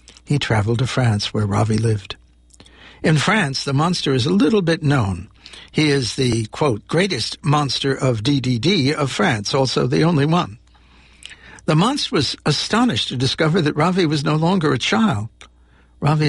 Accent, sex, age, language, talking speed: American, male, 60-79, English, 160 wpm